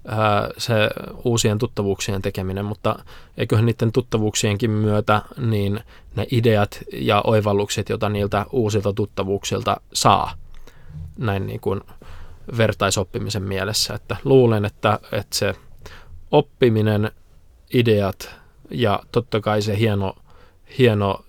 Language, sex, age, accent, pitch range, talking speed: Finnish, male, 20-39, native, 95-110 Hz, 100 wpm